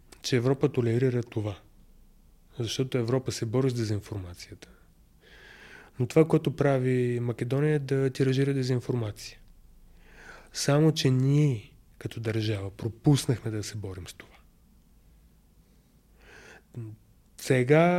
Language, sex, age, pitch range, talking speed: Bulgarian, male, 30-49, 110-135 Hz, 105 wpm